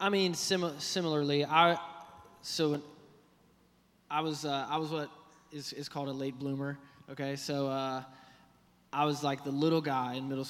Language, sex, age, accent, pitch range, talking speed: English, male, 20-39, American, 115-140 Hz, 165 wpm